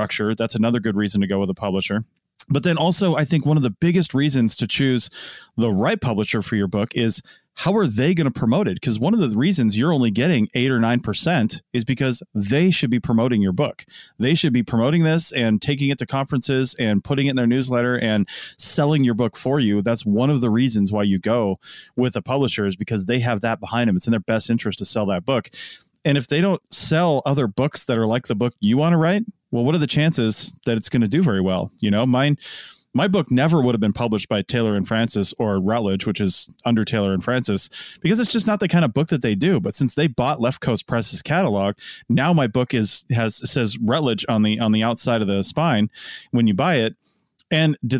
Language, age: English, 30-49